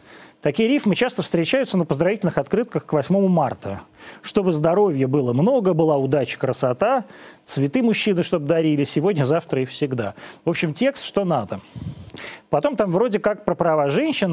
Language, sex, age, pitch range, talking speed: Russian, male, 30-49, 140-195 Hz, 155 wpm